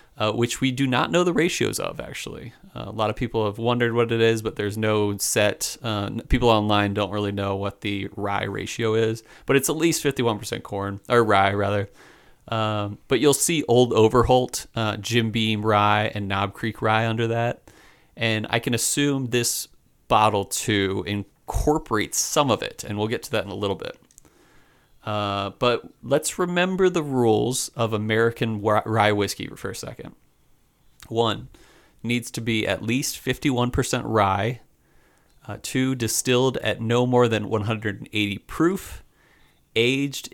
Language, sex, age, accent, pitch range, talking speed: English, male, 30-49, American, 105-125 Hz, 165 wpm